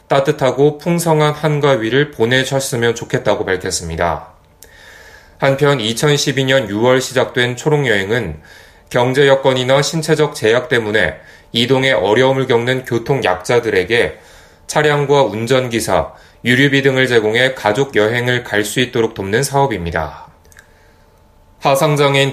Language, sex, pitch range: Korean, male, 110-145 Hz